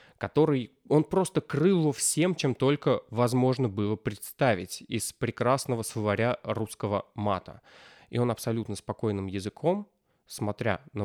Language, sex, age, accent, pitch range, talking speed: Russian, male, 20-39, native, 105-140 Hz, 125 wpm